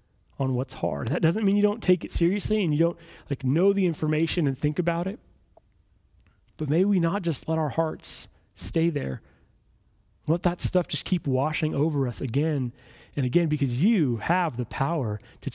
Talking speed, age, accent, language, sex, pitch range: 190 wpm, 30-49, American, English, male, 130-190 Hz